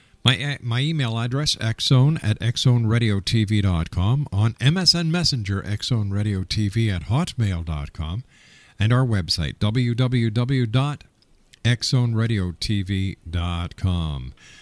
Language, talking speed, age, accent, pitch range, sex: English, 75 wpm, 50-69, American, 105-140 Hz, male